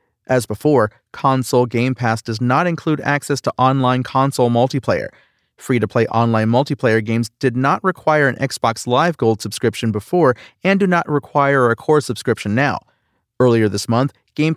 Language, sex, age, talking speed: English, male, 40-59, 165 wpm